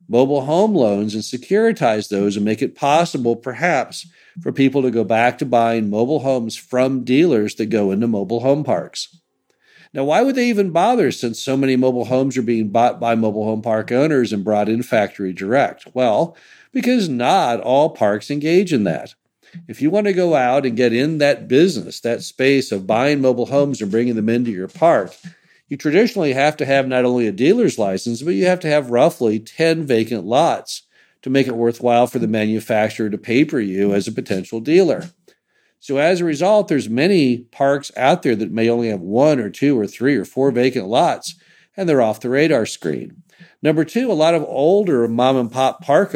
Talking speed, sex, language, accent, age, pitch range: 200 wpm, male, English, American, 50-69, 110-155 Hz